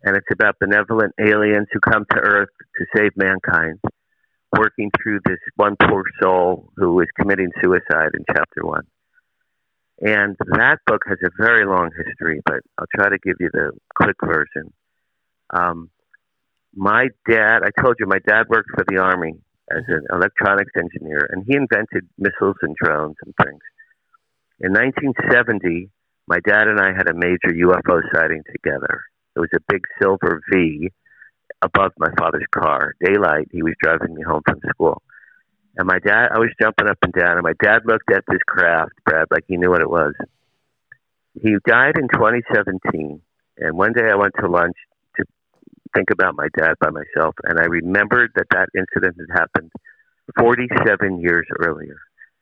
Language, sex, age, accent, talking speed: English, male, 50-69, American, 170 wpm